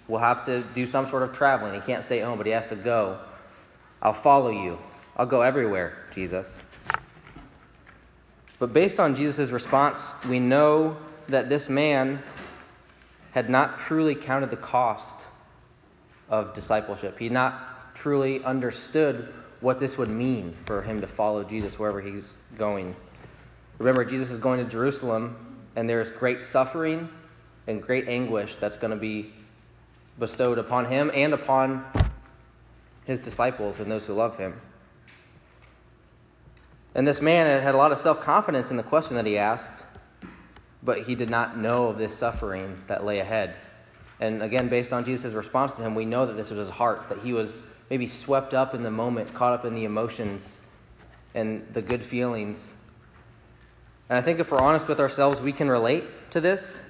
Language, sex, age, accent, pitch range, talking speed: English, male, 20-39, American, 110-130 Hz, 170 wpm